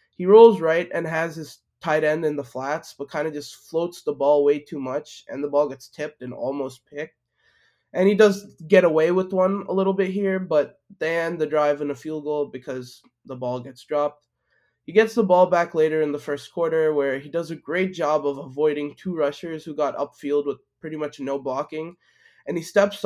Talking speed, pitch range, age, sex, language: 220 wpm, 140-170 Hz, 20-39, male, English